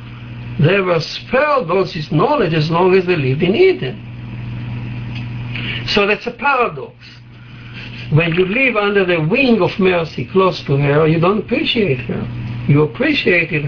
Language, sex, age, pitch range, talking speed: English, male, 60-79, 120-195 Hz, 150 wpm